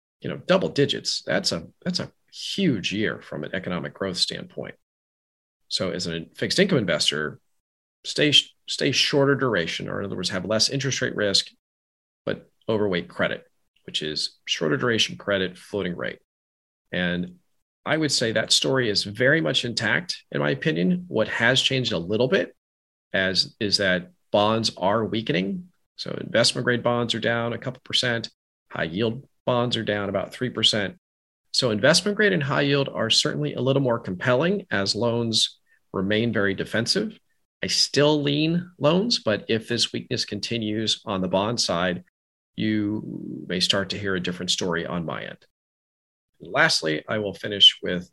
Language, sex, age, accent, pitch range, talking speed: English, male, 40-59, American, 95-130 Hz, 165 wpm